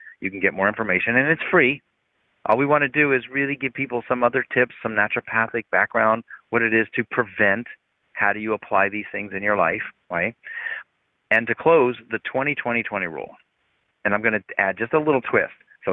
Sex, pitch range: male, 105-135 Hz